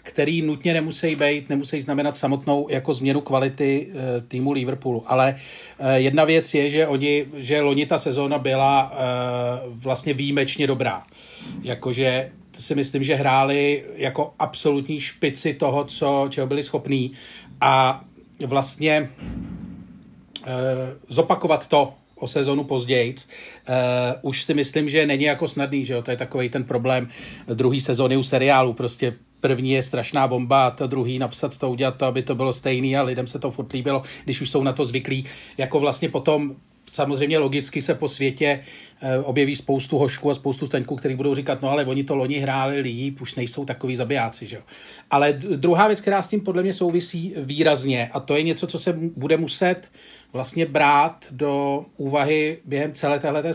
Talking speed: 165 wpm